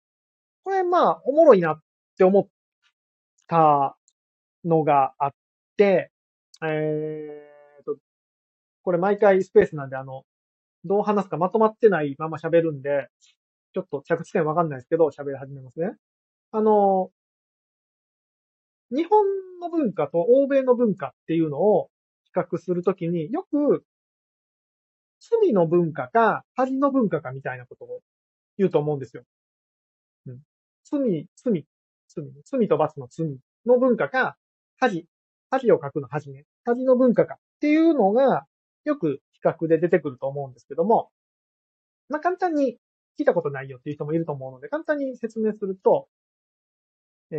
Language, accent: Japanese, native